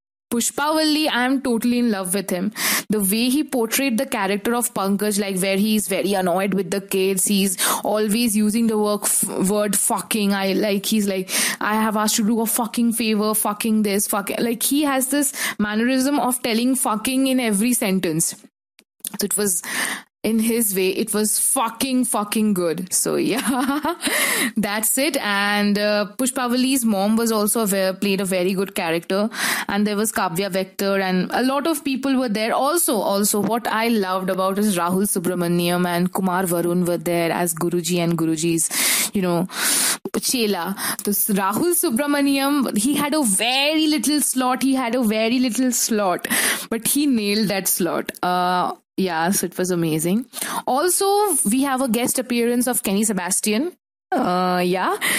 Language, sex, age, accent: English, female, 20-39, Indian